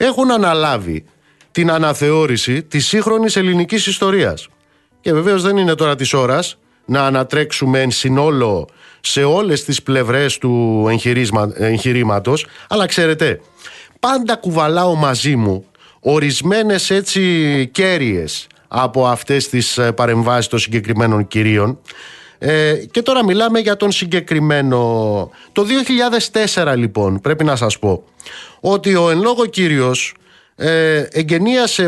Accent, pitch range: native, 125-190 Hz